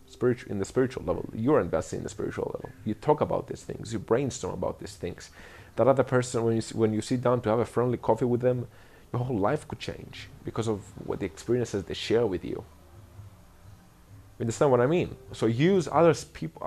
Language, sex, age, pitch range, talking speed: English, male, 30-49, 100-125 Hz, 215 wpm